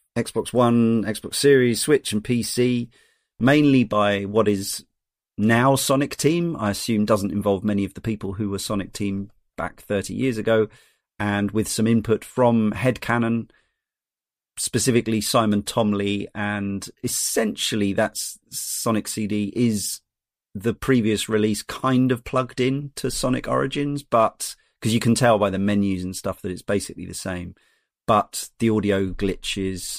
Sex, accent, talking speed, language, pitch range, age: male, British, 150 wpm, English, 100-120 Hz, 30-49